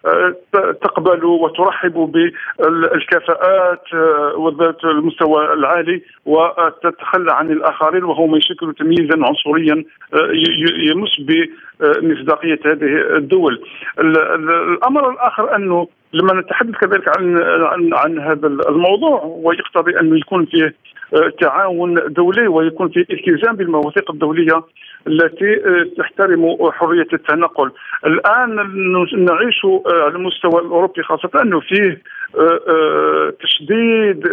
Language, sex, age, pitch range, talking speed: Arabic, male, 50-69, 160-215 Hz, 95 wpm